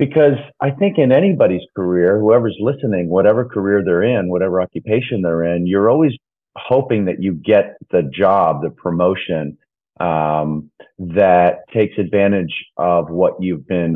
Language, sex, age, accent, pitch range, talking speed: English, male, 40-59, American, 85-110 Hz, 145 wpm